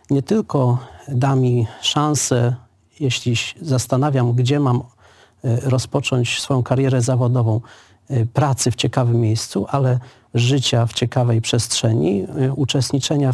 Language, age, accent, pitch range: Polish, 40-59, native, 120-140 Hz